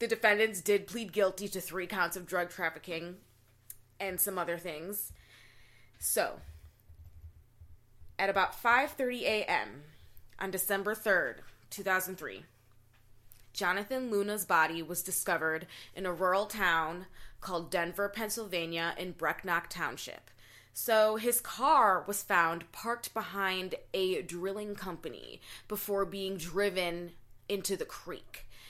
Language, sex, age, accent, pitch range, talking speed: English, female, 20-39, American, 165-210 Hz, 115 wpm